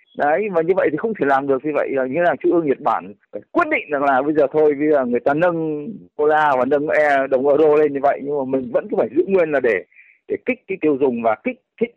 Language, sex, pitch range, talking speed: Vietnamese, male, 145-230 Hz, 285 wpm